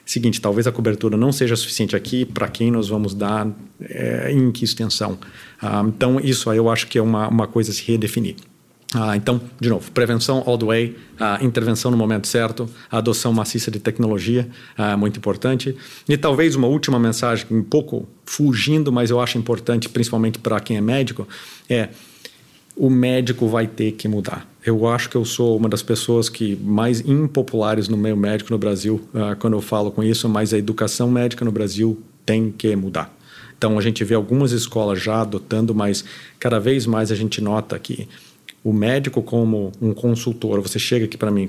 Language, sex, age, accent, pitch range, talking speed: Portuguese, male, 50-69, Brazilian, 105-120 Hz, 190 wpm